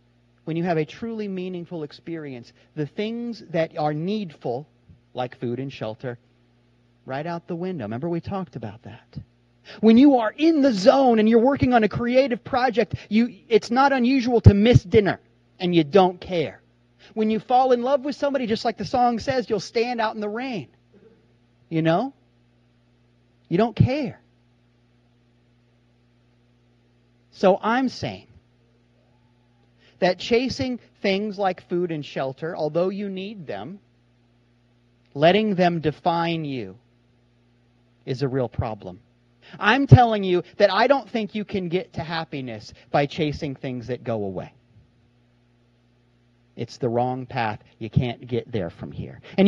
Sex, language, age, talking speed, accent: male, English, 30-49, 150 wpm, American